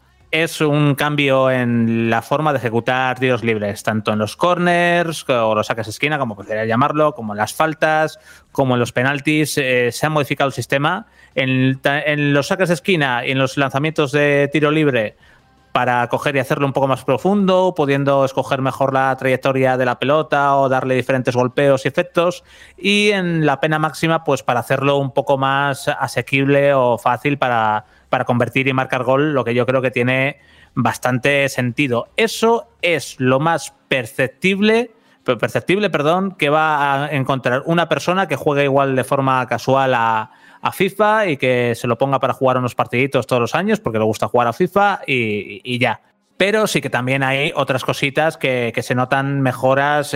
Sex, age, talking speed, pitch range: male, 30-49, 185 wpm, 125-150 Hz